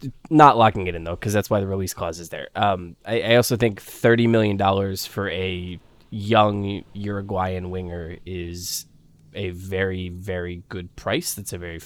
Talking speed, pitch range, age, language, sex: 170 wpm, 90-105 Hz, 20-39, English, male